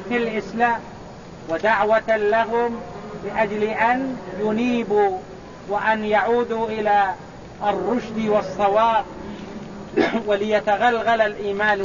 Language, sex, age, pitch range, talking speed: English, male, 50-69, 190-225 Hz, 65 wpm